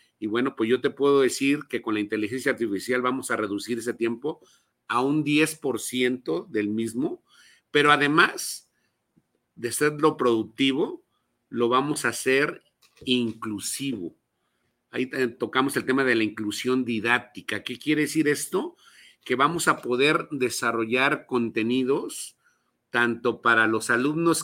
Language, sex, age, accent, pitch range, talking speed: Spanish, male, 50-69, Mexican, 110-140 Hz, 135 wpm